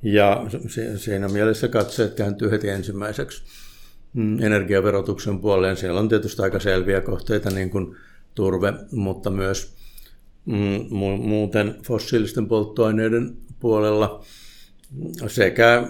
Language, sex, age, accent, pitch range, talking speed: Finnish, male, 60-79, native, 100-115 Hz, 100 wpm